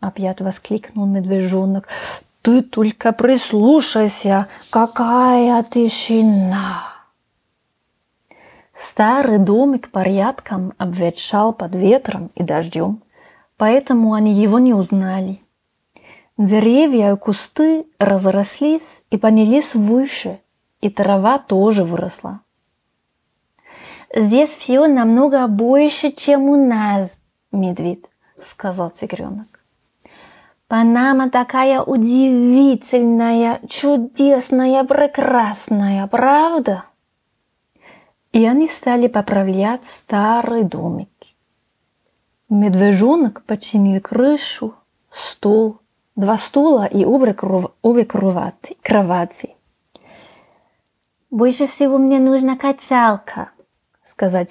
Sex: female